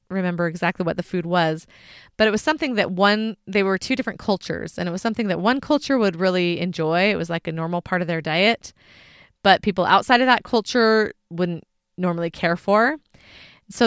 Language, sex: English, female